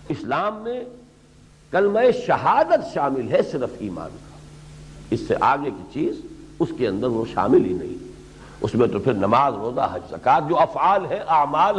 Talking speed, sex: 165 wpm, male